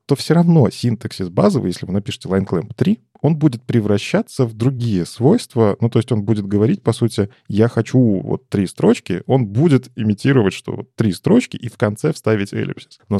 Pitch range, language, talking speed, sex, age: 105-130 Hz, Russian, 185 wpm, male, 20-39